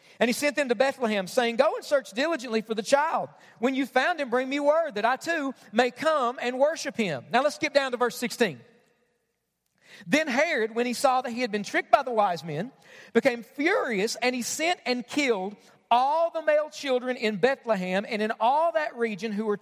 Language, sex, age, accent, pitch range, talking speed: English, male, 40-59, American, 220-280 Hz, 215 wpm